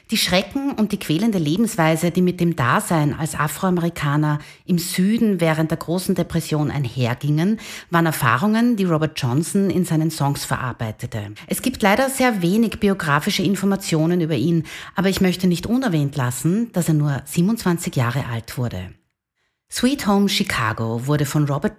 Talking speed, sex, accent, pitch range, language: 155 wpm, female, Austrian, 145-200 Hz, German